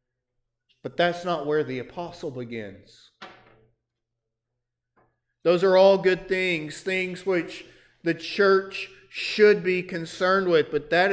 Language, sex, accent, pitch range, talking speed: English, male, American, 125-165 Hz, 120 wpm